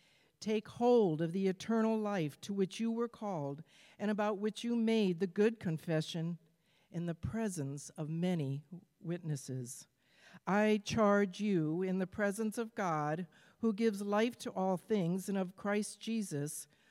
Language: English